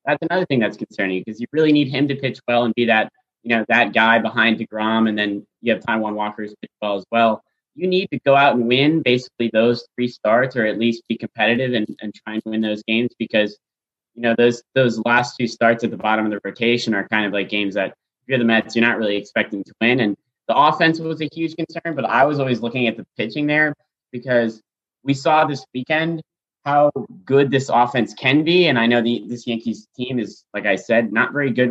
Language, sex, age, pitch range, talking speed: English, male, 20-39, 110-140 Hz, 240 wpm